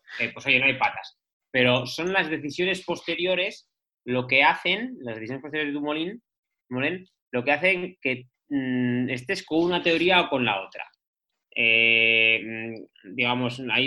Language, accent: Spanish, Spanish